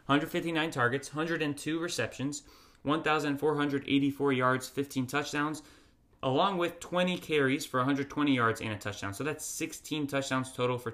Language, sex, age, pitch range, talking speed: English, male, 20-39, 115-140 Hz, 130 wpm